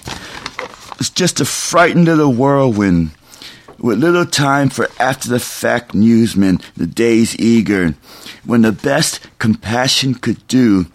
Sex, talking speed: male, 125 wpm